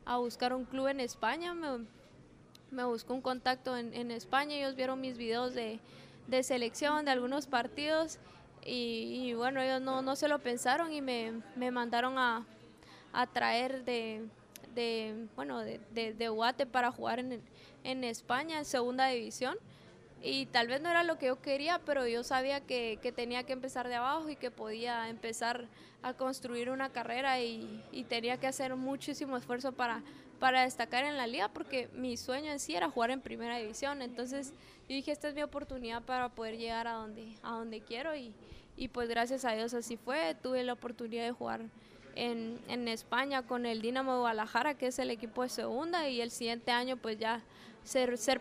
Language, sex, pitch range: Spanish, female, 235-265 Hz